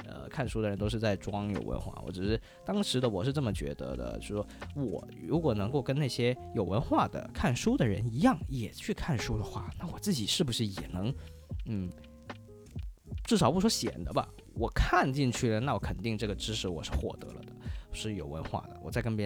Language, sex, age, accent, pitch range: Chinese, male, 20-39, native, 95-130 Hz